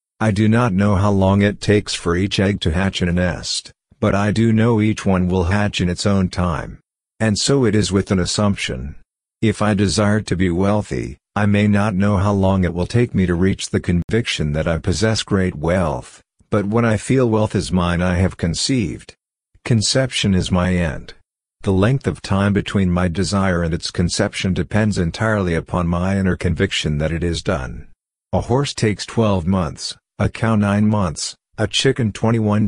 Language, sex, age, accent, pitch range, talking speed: English, male, 50-69, American, 90-105 Hz, 195 wpm